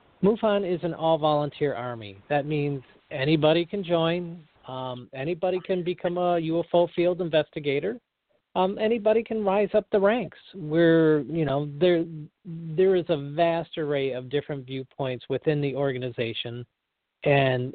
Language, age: English, 40-59